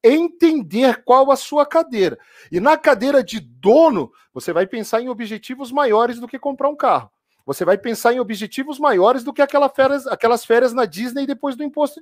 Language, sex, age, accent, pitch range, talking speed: Portuguese, male, 40-59, Brazilian, 220-305 Hz, 180 wpm